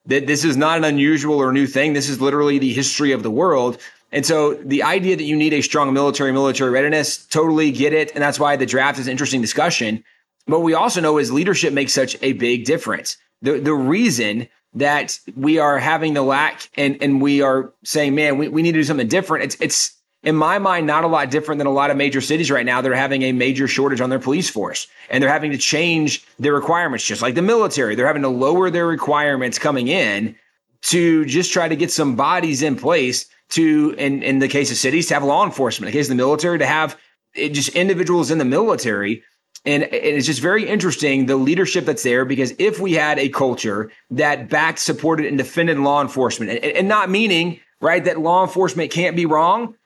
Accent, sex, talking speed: American, male, 225 wpm